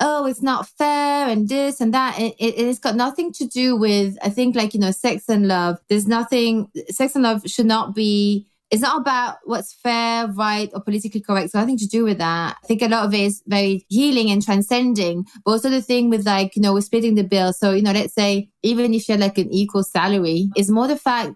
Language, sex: English, female